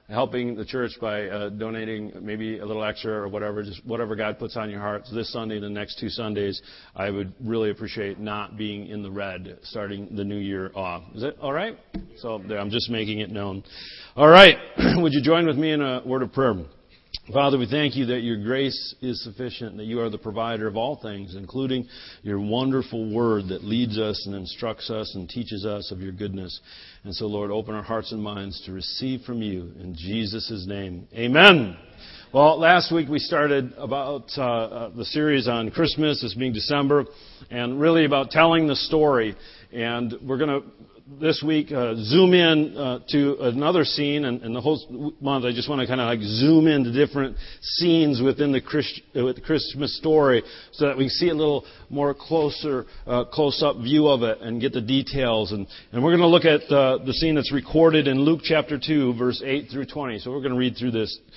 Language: English